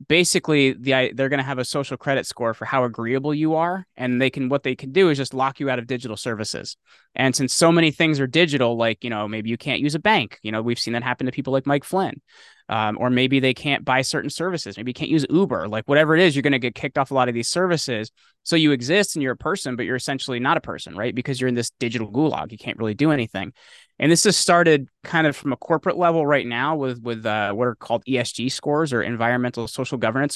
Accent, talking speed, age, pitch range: American, 260 wpm, 20-39, 120-150 Hz